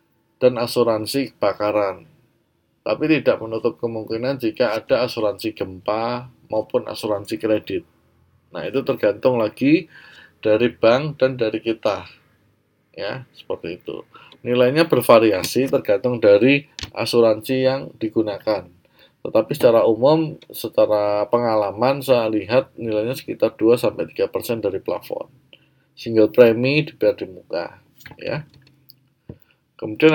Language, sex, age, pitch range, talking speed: Indonesian, male, 20-39, 110-140 Hz, 105 wpm